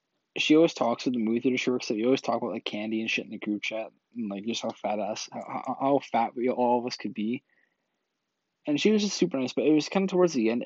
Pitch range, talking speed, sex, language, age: 115-140 Hz, 280 wpm, male, English, 20-39